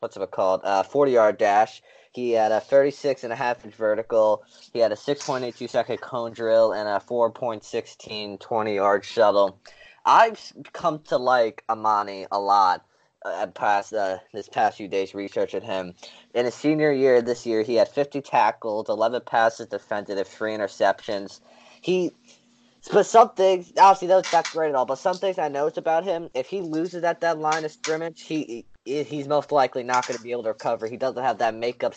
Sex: male